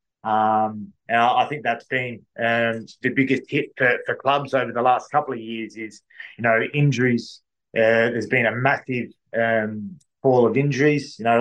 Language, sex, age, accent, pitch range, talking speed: English, male, 20-39, Australian, 115-130 Hz, 180 wpm